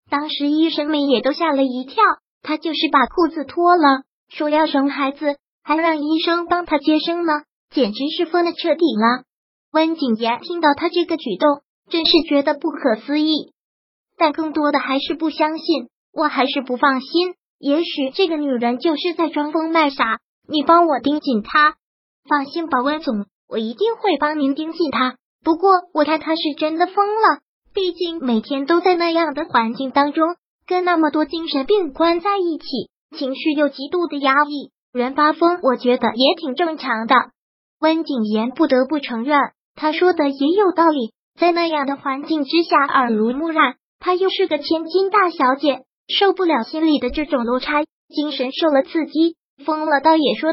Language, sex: Chinese, male